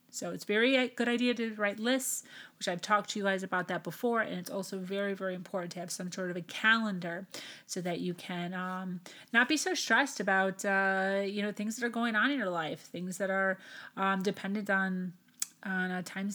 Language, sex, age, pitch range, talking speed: English, female, 30-49, 190-235 Hz, 220 wpm